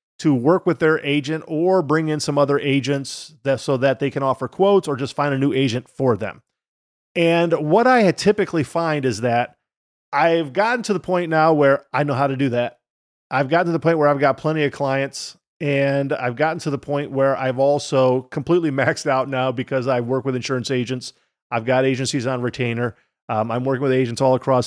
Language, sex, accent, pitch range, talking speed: English, male, American, 130-155 Hz, 210 wpm